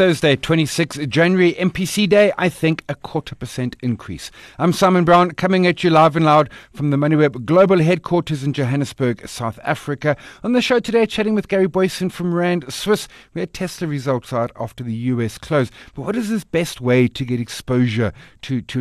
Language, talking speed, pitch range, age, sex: English, 190 wpm, 125-170 Hz, 50-69, male